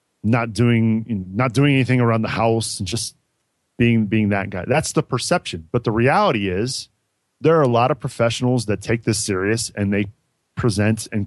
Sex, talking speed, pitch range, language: male, 185 wpm, 105-140 Hz, English